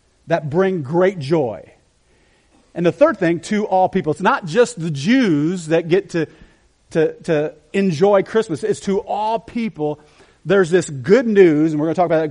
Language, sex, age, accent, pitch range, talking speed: English, male, 40-59, American, 150-195 Hz, 180 wpm